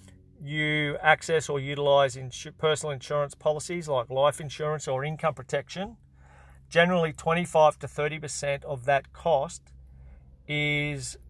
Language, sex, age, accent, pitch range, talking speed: English, male, 40-59, Australian, 130-155 Hz, 120 wpm